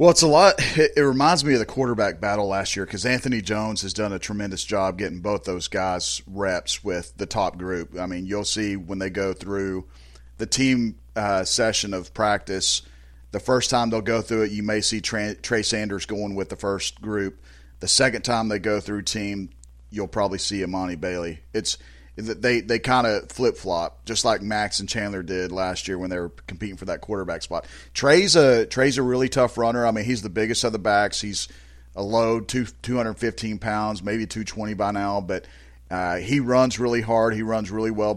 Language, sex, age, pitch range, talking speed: English, male, 40-59, 95-120 Hz, 210 wpm